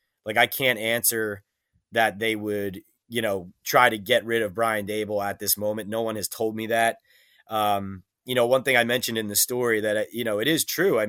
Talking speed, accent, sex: 225 wpm, American, male